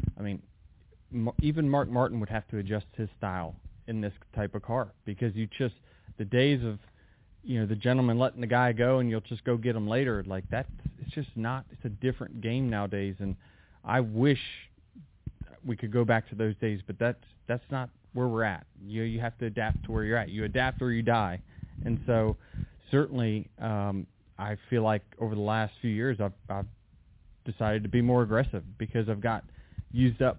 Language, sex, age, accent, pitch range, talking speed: English, male, 30-49, American, 100-125 Hz, 200 wpm